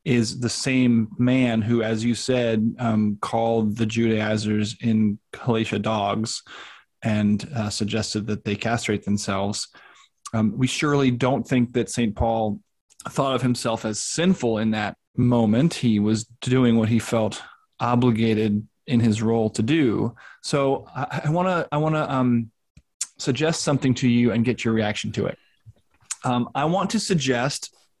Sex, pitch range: male, 115-135 Hz